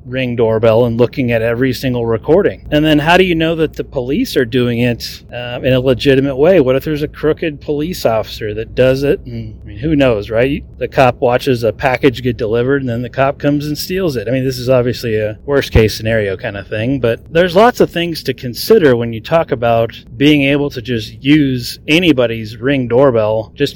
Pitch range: 110-140 Hz